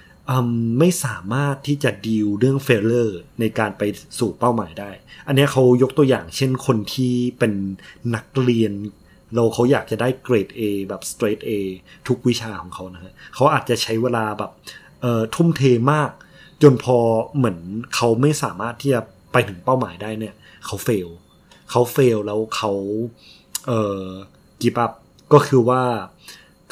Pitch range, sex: 110-130 Hz, male